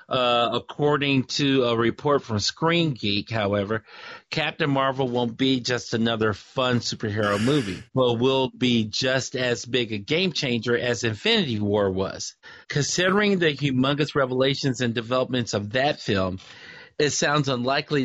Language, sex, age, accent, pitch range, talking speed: English, male, 40-59, American, 115-140 Hz, 145 wpm